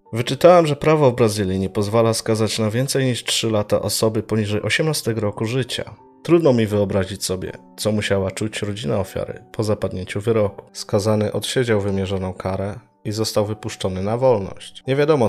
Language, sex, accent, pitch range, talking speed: Polish, male, native, 100-120 Hz, 160 wpm